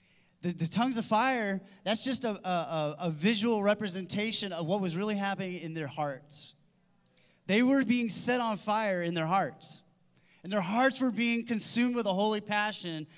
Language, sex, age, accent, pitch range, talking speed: English, male, 30-49, American, 160-225 Hz, 175 wpm